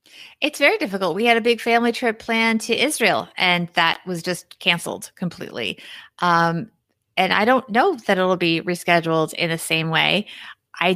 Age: 30-49